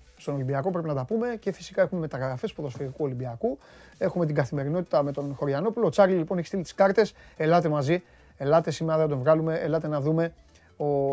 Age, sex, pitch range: 30-49, male, 135-185 Hz